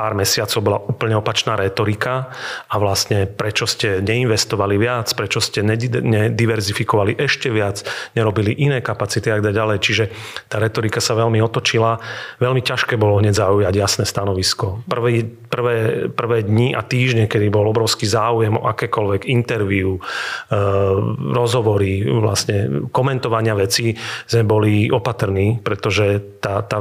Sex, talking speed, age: male, 130 wpm, 40-59